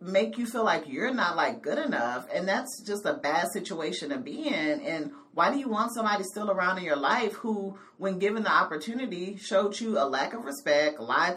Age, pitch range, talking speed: 40-59, 155-205 Hz, 215 wpm